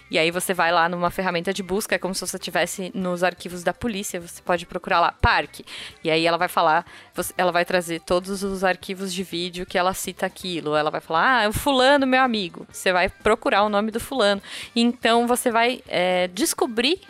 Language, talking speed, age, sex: Portuguese, 210 wpm, 20-39, female